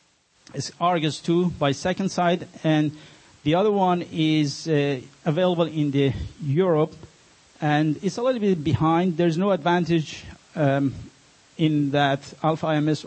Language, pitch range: English, 145-165 Hz